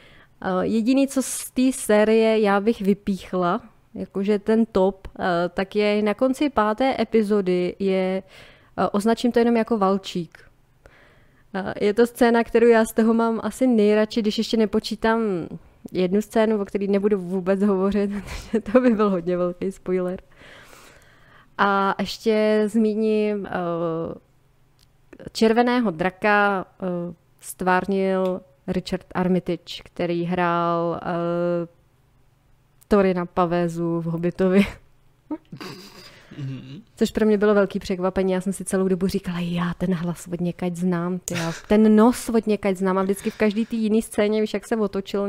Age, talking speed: 20-39, 135 wpm